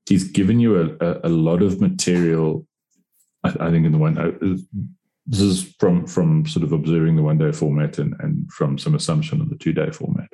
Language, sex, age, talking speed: English, male, 30-49, 195 wpm